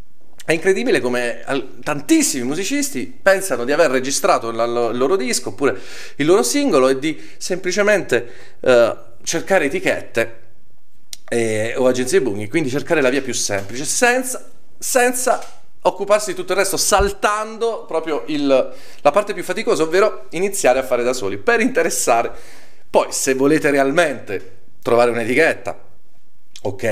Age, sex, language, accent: 40-59, male, Italian, native